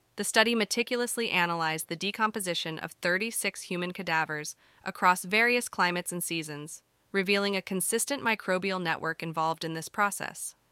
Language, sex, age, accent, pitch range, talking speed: English, female, 20-39, American, 175-210 Hz, 135 wpm